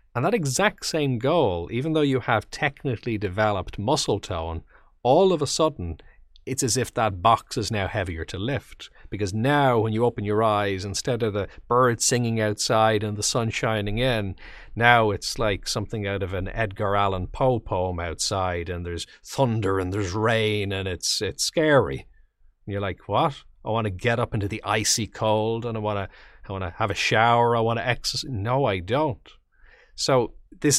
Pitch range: 95-115 Hz